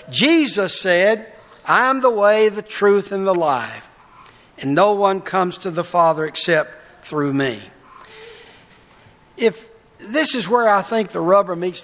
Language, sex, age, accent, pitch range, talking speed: English, male, 60-79, American, 180-235 Hz, 150 wpm